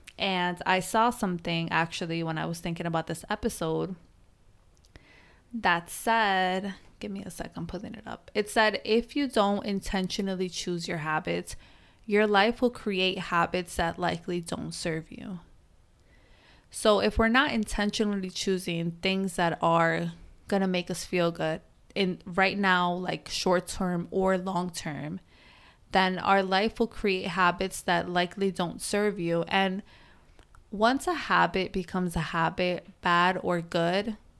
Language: English